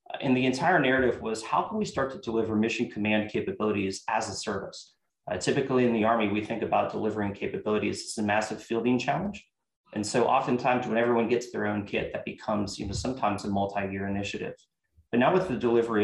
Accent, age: American, 30-49